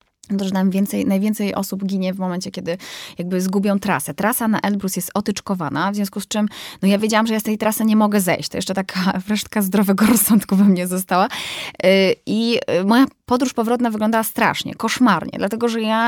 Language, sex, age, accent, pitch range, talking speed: Polish, female, 20-39, native, 190-230 Hz, 195 wpm